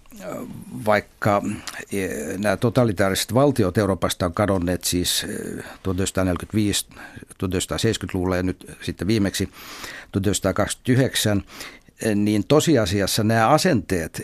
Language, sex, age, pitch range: Finnish, male, 60-79, 95-115 Hz